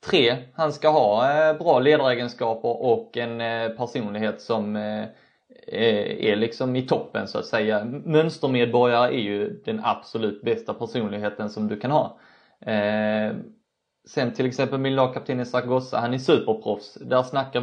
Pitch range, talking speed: 115-145 Hz, 135 wpm